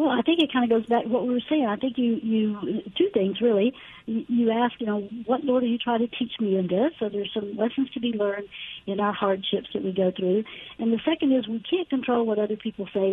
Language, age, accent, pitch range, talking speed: English, 60-79, American, 195-240 Hz, 270 wpm